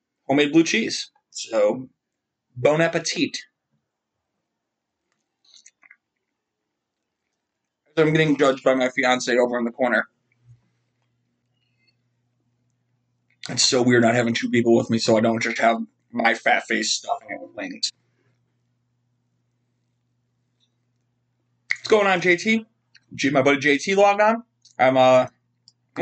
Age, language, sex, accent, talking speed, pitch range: 30-49, English, male, American, 110 wpm, 120-175 Hz